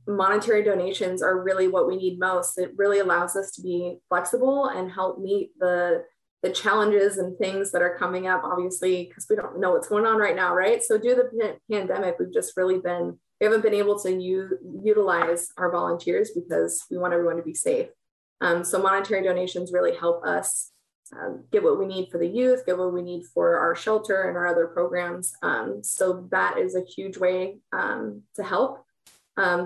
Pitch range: 180-215 Hz